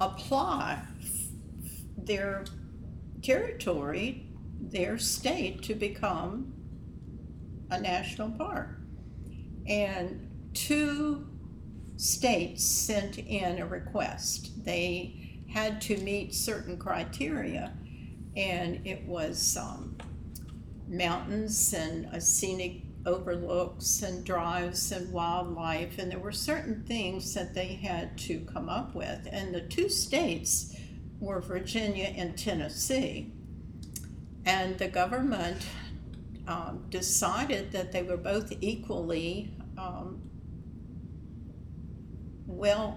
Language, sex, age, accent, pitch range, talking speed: English, female, 60-79, American, 170-205 Hz, 95 wpm